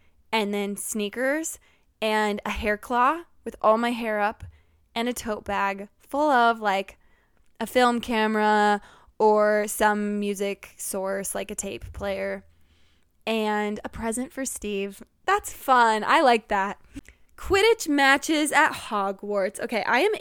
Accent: American